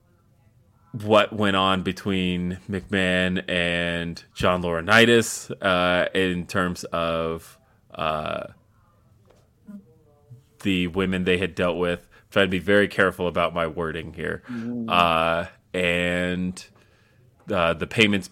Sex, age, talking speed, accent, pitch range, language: male, 30-49, 110 wpm, American, 90-105 Hz, English